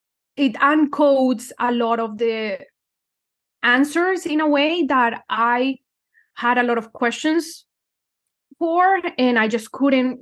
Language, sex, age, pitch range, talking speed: English, female, 20-39, 220-255 Hz, 130 wpm